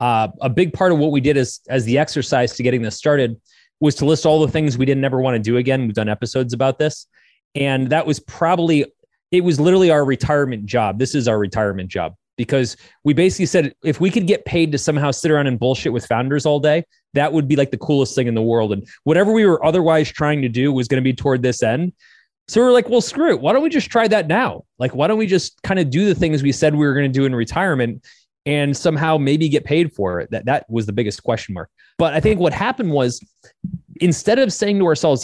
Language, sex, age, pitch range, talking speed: English, male, 20-39, 130-180 Hz, 255 wpm